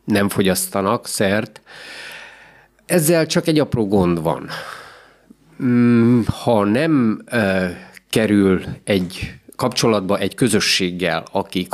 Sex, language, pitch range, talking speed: male, Hungarian, 100-135 Hz, 85 wpm